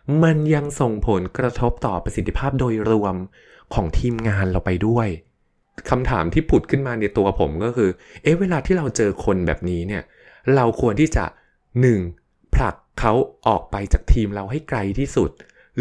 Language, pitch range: Thai, 90-125 Hz